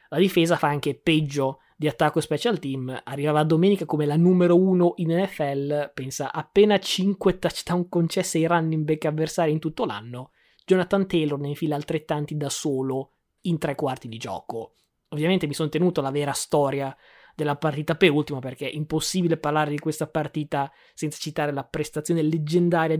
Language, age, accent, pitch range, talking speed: Italian, 20-39, native, 145-170 Hz, 165 wpm